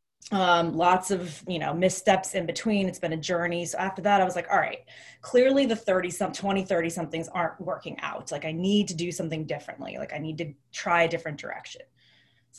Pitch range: 165-205 Hz